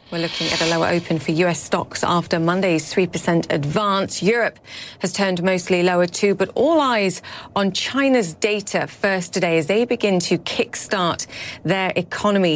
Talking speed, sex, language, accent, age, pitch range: 160 wpm, female, English, British, 30-49, 170-205 Hz